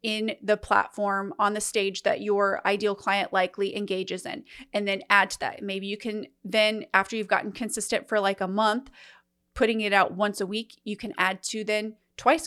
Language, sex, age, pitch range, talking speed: English, female, 30-49, 200-230 Hz, 200 wpm